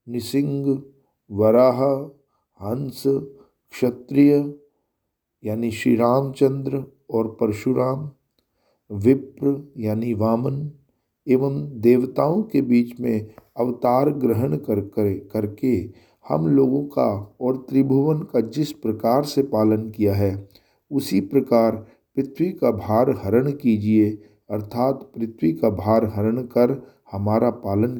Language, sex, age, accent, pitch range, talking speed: Hindi, male, 50-69, native, 110-135 Hz, 105 wpm